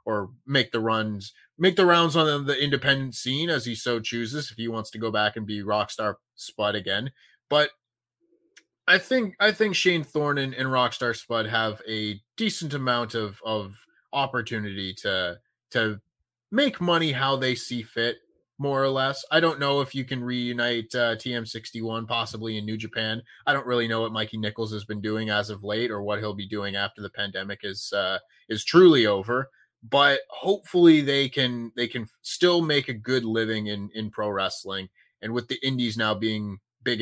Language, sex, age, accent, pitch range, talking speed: English, male, 20-39, American, 110-140 Hz, 190 wpm